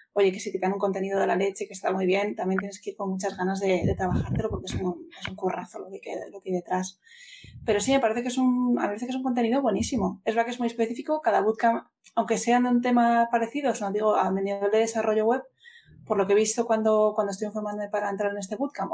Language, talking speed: Spanish, 275 wpm